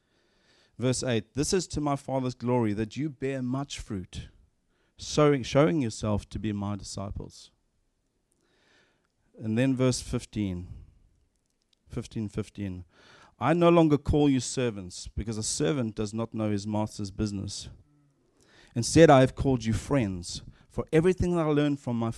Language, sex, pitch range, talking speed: English, male, 100-125 Hz, 145 wpm